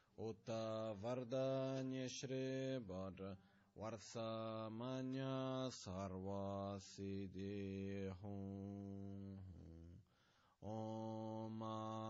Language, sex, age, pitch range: Italian, male, 20-39, 95-110 Hz